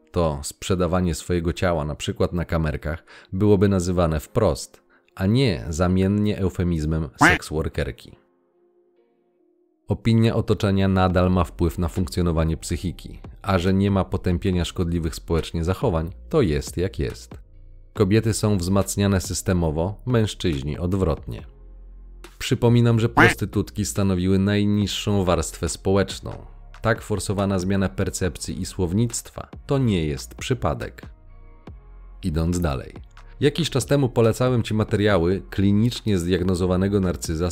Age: 40-59